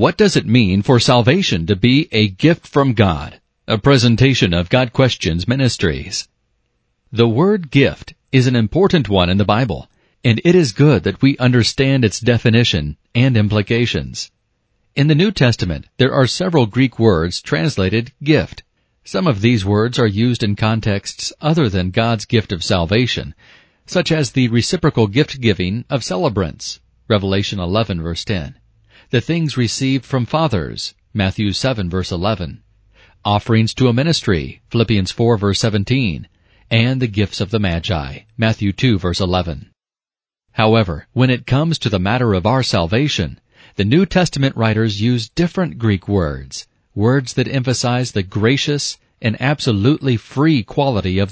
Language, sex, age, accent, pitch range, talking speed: English, male, 40-59, American, 100-135 Hz, 150 wpm